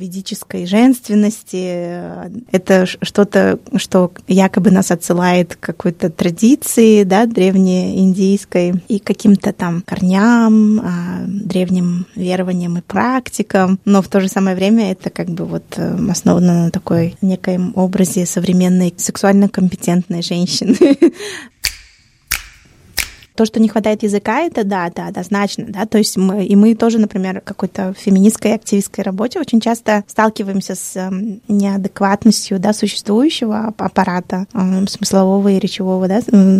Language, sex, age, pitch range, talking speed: Russian, female, 20-39, 185-215 Hz, 120 wpm